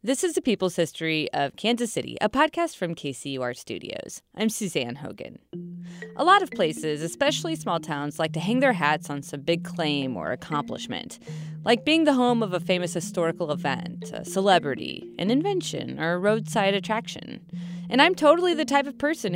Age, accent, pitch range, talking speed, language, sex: 30-49, American, 170-235 Hz, 180 wpm, English, female